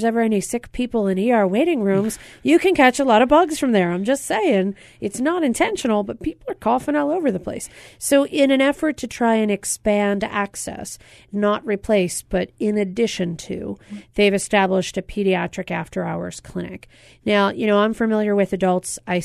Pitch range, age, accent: 185-230 Hz, 40-59, American